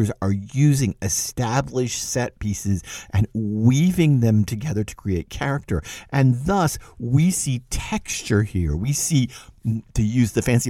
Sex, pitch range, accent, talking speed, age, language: male, 100-130 Hz, American, 135 wpm, 50-69, English